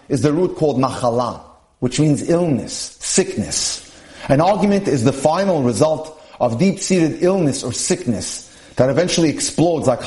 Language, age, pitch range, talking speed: English, 40-59, 135-195 Hz, 145 wpm